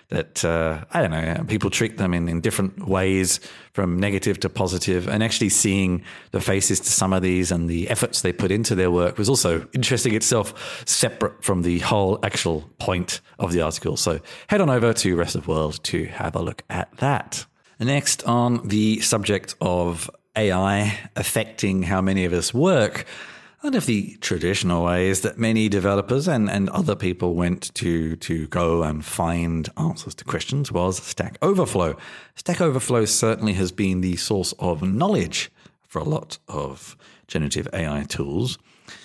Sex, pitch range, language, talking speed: male, 90-120 Hz, English, 170 wpm